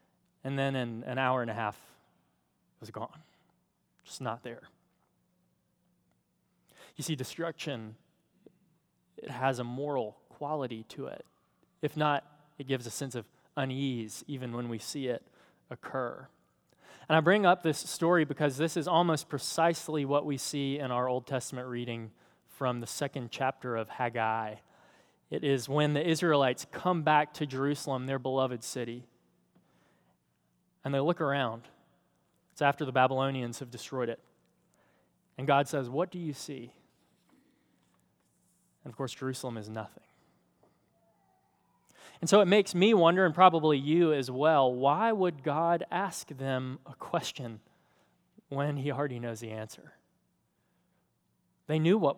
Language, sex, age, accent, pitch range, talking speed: English, male, 20-39, American, 125-155 Hz, 145 wpm